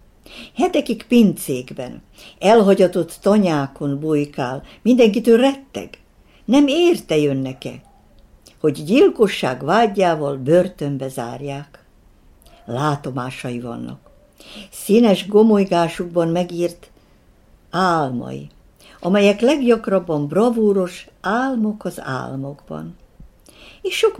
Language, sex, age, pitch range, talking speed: Hungarian, female, 60-79, 150-235 Hz, 70 wpm